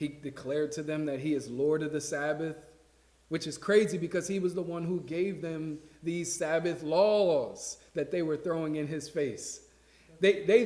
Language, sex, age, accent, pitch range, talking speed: English, male, 40-59, American, 120-160 Hz, 190 wpm